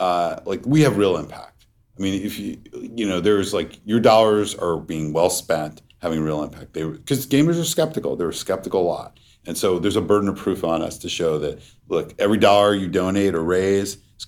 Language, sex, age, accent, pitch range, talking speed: English, male, 50-69, American, 80-105 Hz, 225 wpm